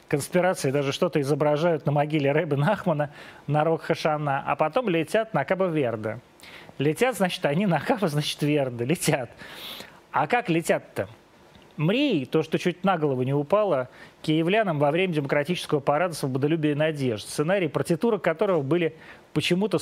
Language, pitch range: Russian, 145-180 Hz